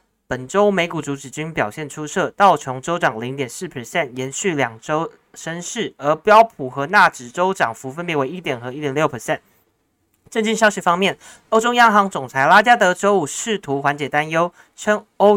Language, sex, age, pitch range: Chinese, male, 20-39, 135-185 Hz